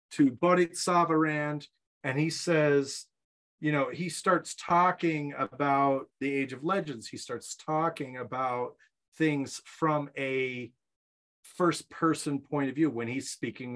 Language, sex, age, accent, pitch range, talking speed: English, male, 30-49, American, 130-180 Hz, 135 wpm